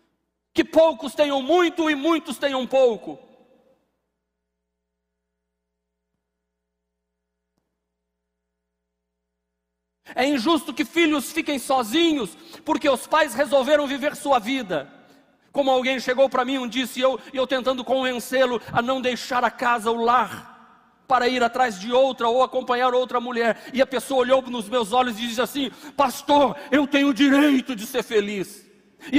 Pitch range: 170-275 Hz